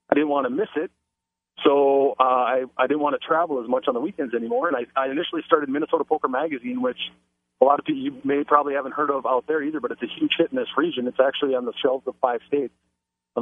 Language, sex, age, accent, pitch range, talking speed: English, male, 40-59, American, 120-145 Hz, 265 wpm